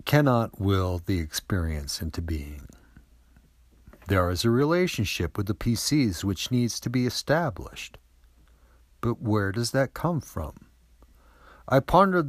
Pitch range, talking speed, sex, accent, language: 80-115 Hz, 125 wpm, male, American, English